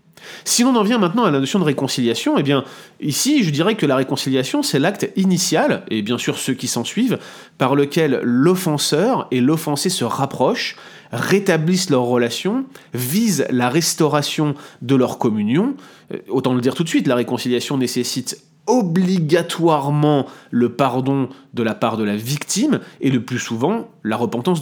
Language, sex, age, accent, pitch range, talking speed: French, male, 30-49, French, 120-170 Hz, 170 wpm